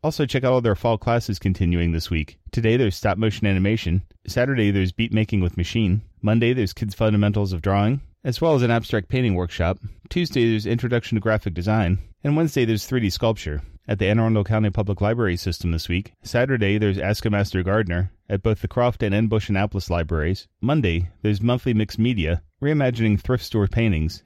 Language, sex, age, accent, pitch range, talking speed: English, male, 30-49, American, 90-115 Hz, 195 wpm